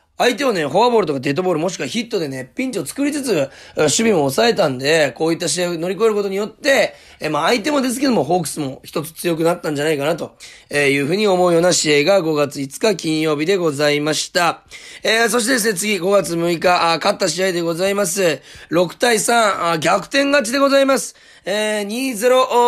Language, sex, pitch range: Japanese, male, 165-235 Hz